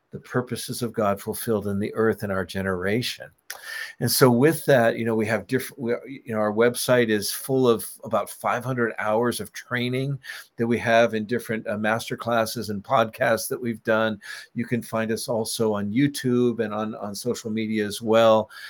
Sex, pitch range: male, 110-120 Hz